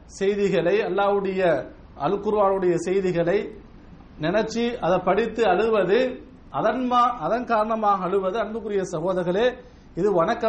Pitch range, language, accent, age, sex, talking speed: 170-210 Hz, English, Indian, 50-69, male, 135 wpm